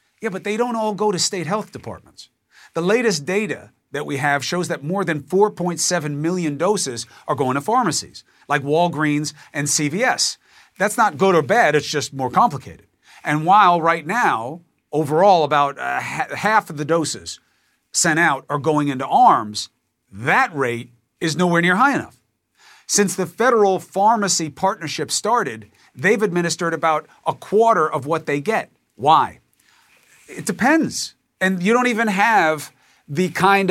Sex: male